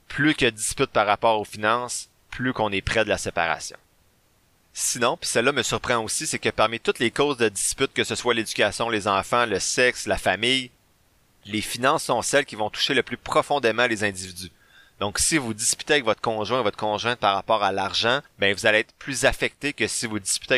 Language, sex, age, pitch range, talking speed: French, male, 30-49, 100-120 Hz, 215 wpm